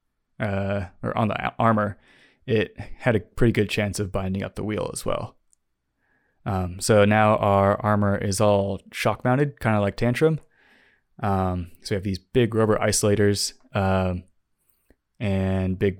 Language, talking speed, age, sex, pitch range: English, 160 wpm, 20-39, male, 95-110 Hz